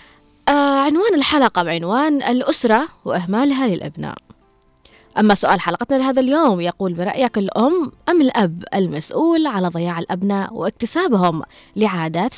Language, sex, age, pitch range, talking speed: Arabic, female, 20-39, 195-260 Hz, 105 wpm